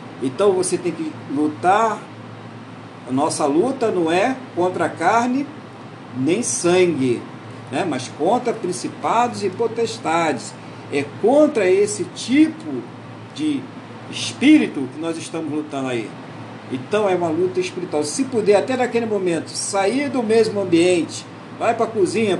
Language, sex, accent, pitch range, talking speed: Portuguese, male, Brazilian, 150-235 Hz, 130 wpm